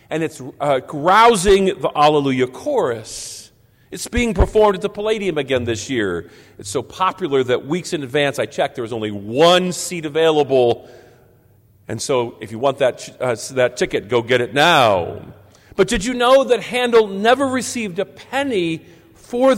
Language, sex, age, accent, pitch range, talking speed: English, male, 50-69, American, 135-220 Hz, 170 wpm